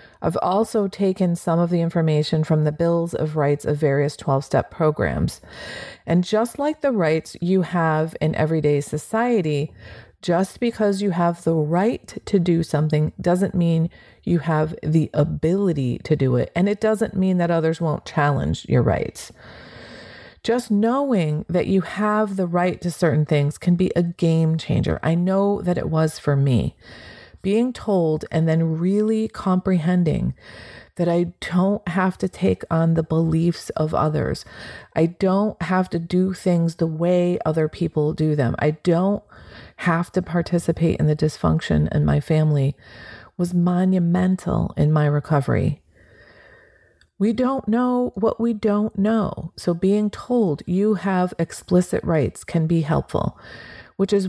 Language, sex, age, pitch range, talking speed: English, female, 30-49, 155-190 Hz, 155 wpm